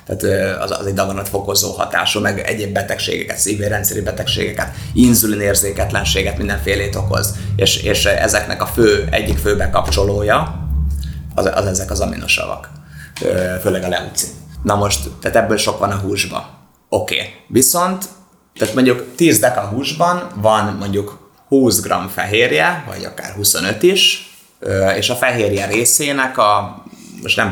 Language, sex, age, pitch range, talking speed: Hungarian, male, 30-49, 95-120 Hz, 130 wpm